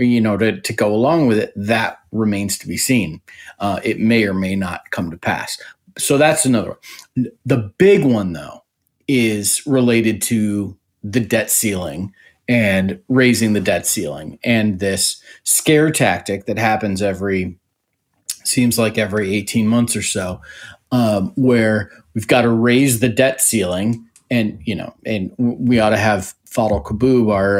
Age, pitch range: 30-49, 100-125 Hz